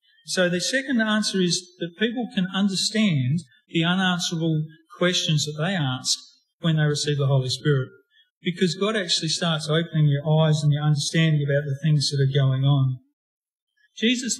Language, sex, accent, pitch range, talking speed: English, male, Australian, 145-185 Hz, 165 wpm